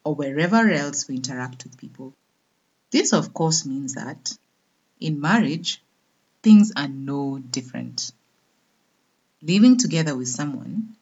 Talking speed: 120 wpm